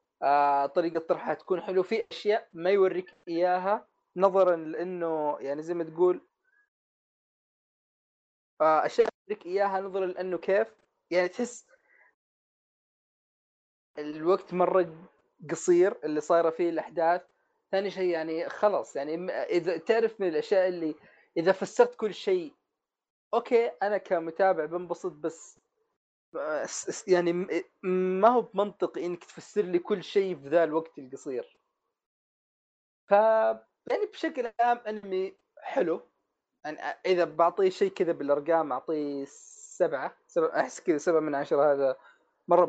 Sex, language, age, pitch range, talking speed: male, Arabic, 20-39, 165-210 Hz, 120 wpm